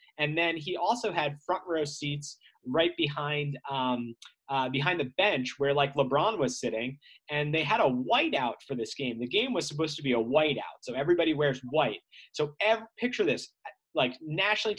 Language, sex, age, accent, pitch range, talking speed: English, male, 30-49, American, 140-200 Hz, 185 wpm